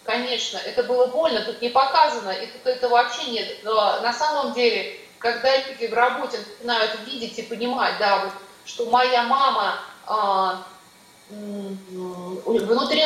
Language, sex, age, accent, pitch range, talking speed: Russian, female, 30-49, native, 205-250 Hz, 140 wpm